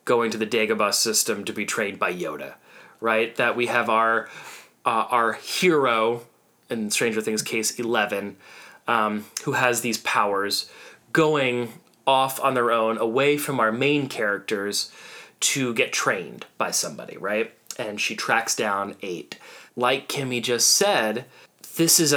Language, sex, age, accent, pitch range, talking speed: English, male, 30-49, American, 110-135 Hz, 150 wpm